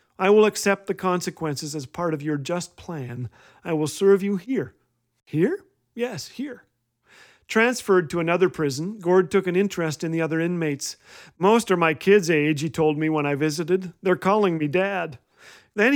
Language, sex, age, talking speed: English, male, 40-59, 175 wpm